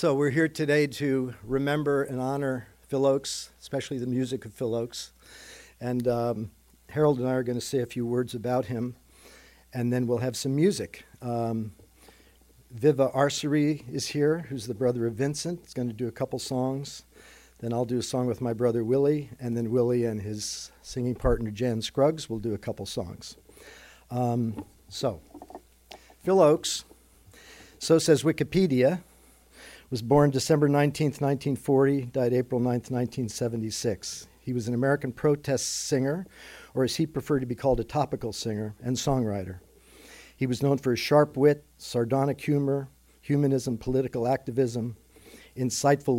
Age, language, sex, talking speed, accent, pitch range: 50-69, English, male, 160 wpm, American, 115-140 Hz